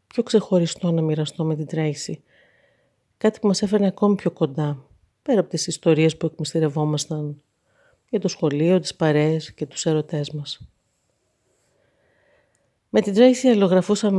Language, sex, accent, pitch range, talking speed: Greek, female, native, 150-180 Hz, 140 wpm